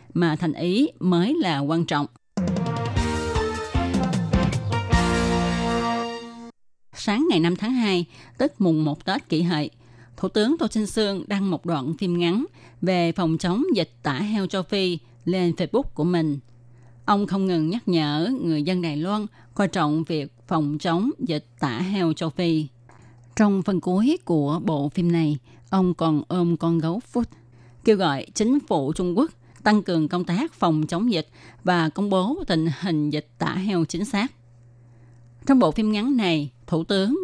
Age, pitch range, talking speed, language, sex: 20-39, 150-200 Hz, 165 wpm, Vietnamese, female